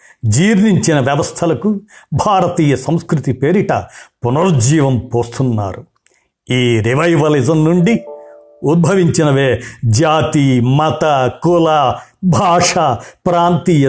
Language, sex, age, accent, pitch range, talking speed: Telugu, male, 60-79, native, 125-170 Hz, 70 wpm